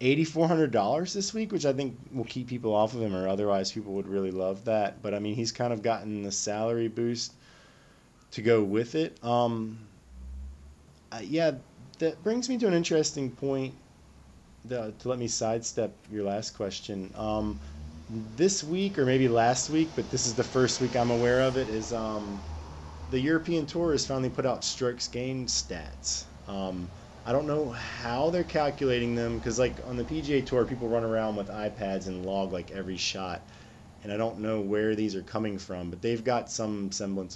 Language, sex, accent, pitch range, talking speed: English, male, American, 100-130 Hz, 190 wpm